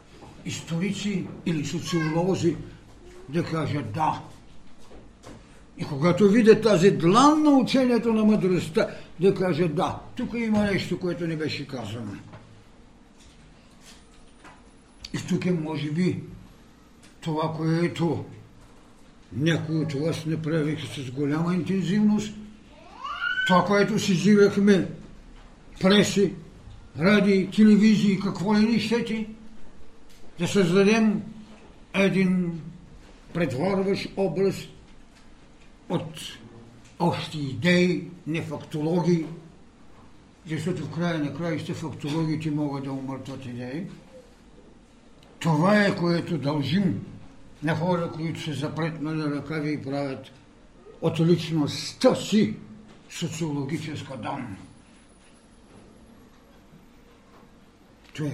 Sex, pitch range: male, 150-195 Hz